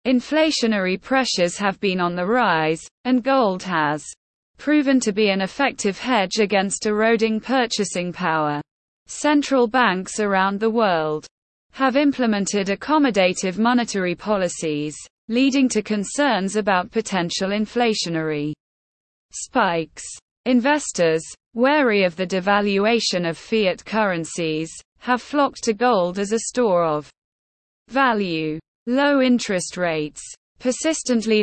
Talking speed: 110 wpm